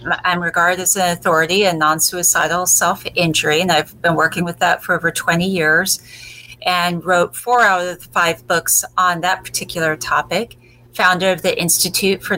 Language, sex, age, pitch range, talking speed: English, female, 40-59, 175-205 Hz, 175 wpm